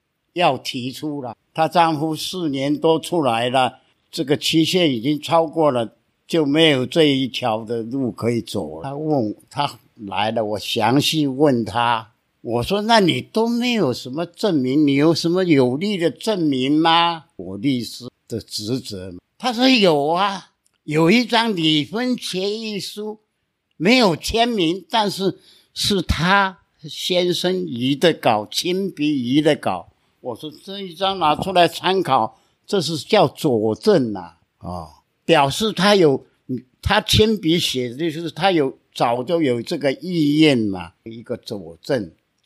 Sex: male